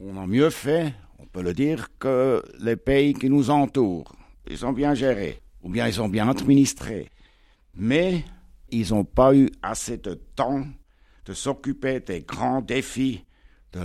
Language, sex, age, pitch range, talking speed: French, male, 60-79, 110-145 Hz, 165 wpm